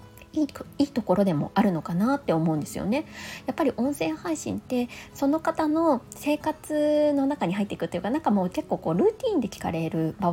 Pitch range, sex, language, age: 170-265 Hz, female, Japanese, 20-39